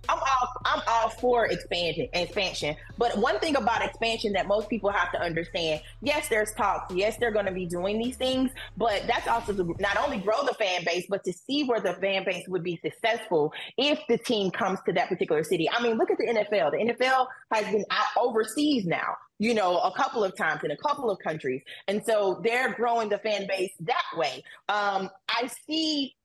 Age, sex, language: 30-49, female, English